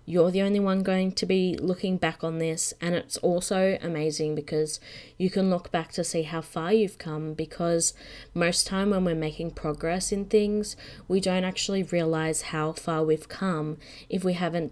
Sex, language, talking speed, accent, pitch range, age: female, English, 190 wpm, Australian, 155-185 Hz, 20-39